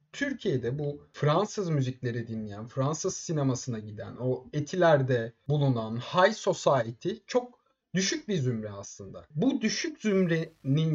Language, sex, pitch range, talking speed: Turkish, male, 130-185 Hz, 115 wpm